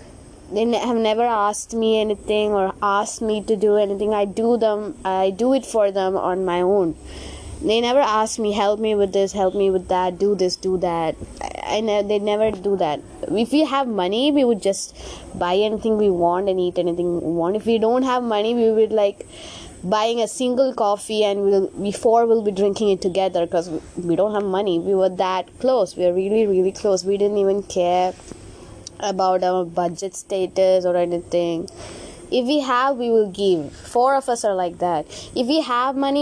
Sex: female